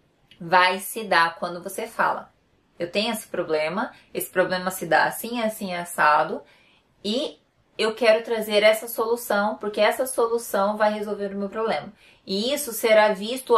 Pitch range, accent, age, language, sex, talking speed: 185-225 Hz, Brazilian, 20-39, Portuguese, female, 155 wpm